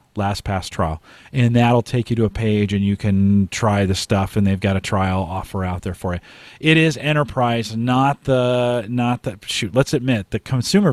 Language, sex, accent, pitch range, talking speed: English, male, American, 100-125 Hz, 205 wpm